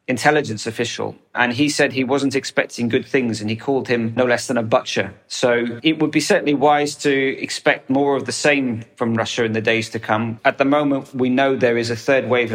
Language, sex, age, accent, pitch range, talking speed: English, male, 30-49, British, 115-140 Hz, 230 wpm